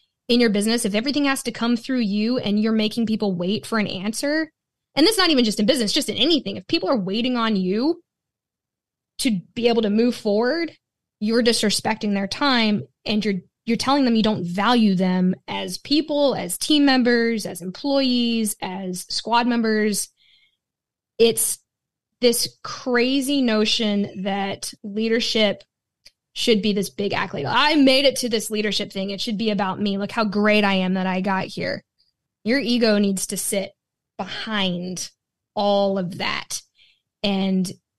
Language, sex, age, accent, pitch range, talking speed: English, female, 10-29, American, 195-240 Hz, 165 wpm